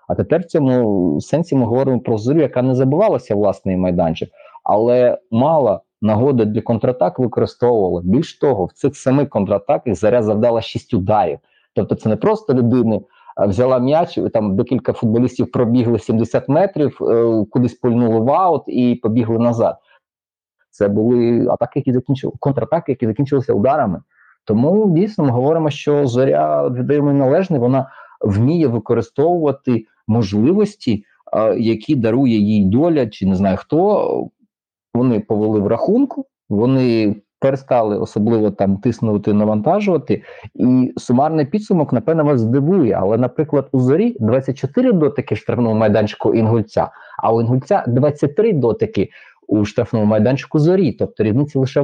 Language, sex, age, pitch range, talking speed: Ukrainian, male, 20-39, 115-140 Hz, 135 wpm